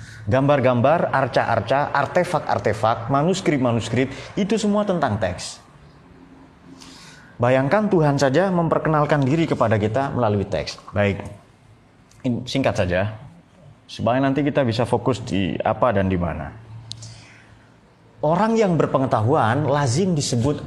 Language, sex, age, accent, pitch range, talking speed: Indonesian, male, 30-49, native, 110-145 Hz, 100 wpm